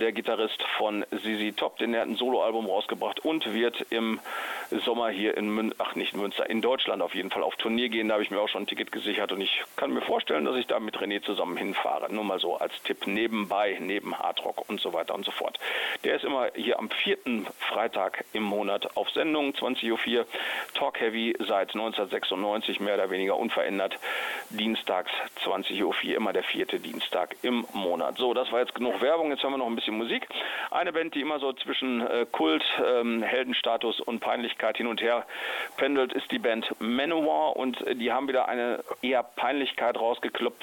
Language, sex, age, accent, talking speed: German, male, 40-59, German, 200 wpm